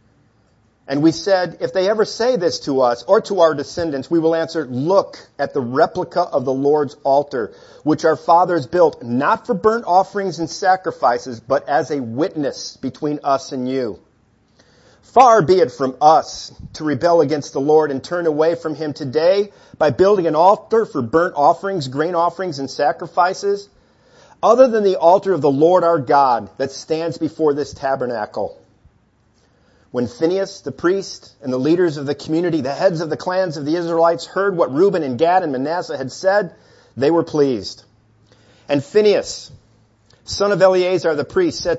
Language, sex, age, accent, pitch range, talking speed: English, male, 50-69, American, 135-175 Hz, 175 wpm